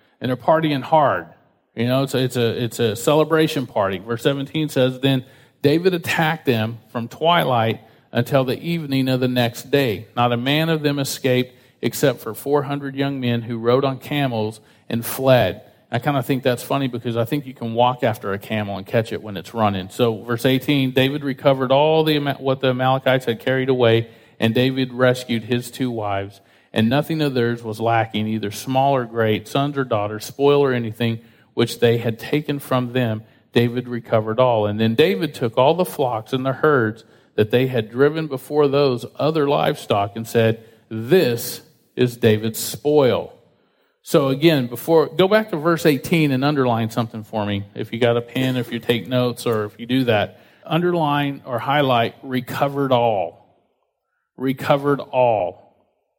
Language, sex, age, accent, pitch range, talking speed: English, male, 40-59, American, 115-140 Hz, 180 wpm